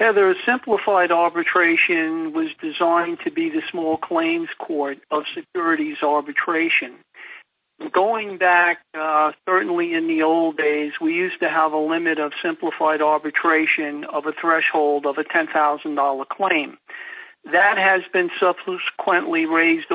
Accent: American